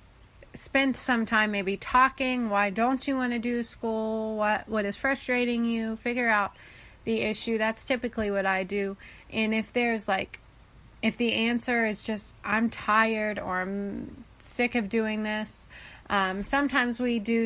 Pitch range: 195-230 Hz